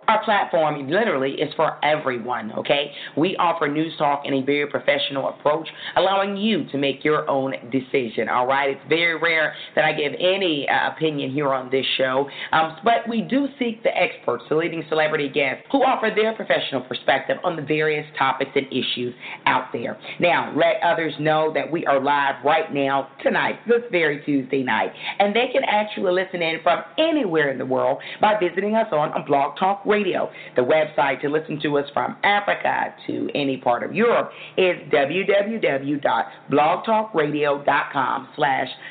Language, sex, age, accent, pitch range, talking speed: English, female, 40-59, American, 140-185 Hz, 170 wpm